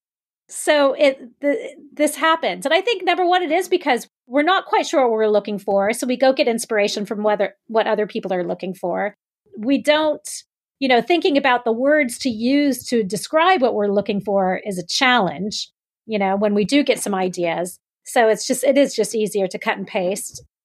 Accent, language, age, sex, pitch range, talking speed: American, English, 30-49, female, 220-295 Hz, 210 wpm